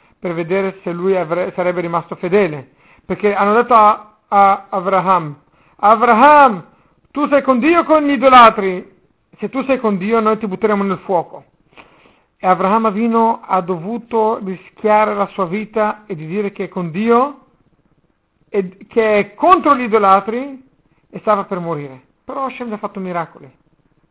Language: Italian